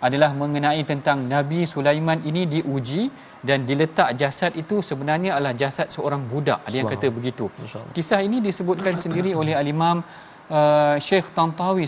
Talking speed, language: 150 wpm, Malayalam